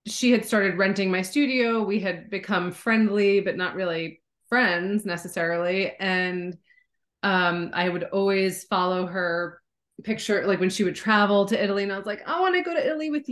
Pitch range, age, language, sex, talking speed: 190-240 Hz, 30-49, English, female, 185 wpm